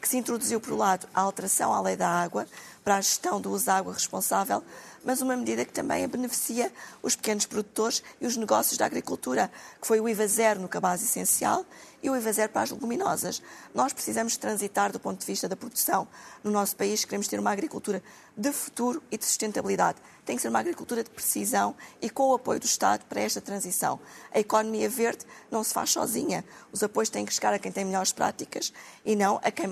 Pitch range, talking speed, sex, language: 190-240 Hz, 215 wpm, female, Portuguese